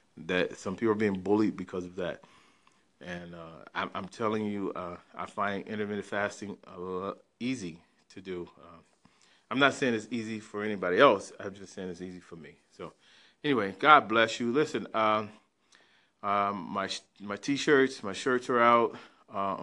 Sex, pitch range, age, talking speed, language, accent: male, 100-115 Hz, 40-59, 170 wpm, English, American